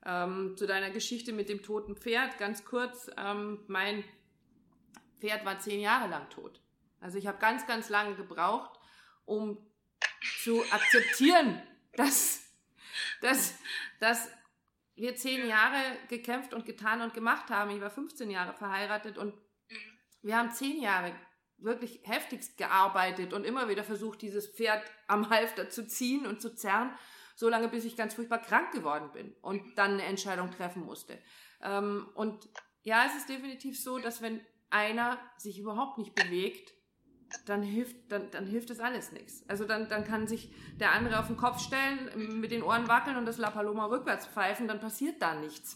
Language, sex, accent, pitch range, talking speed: German, female, German, 200-235 Hz, 165 wpm